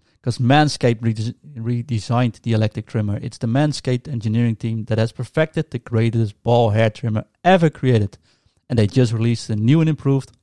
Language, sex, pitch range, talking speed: English, male, 115-135 Hz, 165 wpm